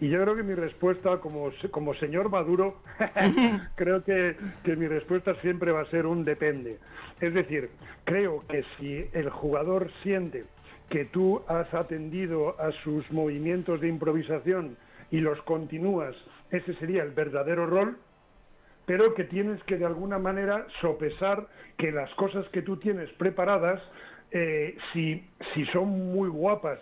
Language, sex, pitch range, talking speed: Spanish, male, 155-185 Hz, 150 wpm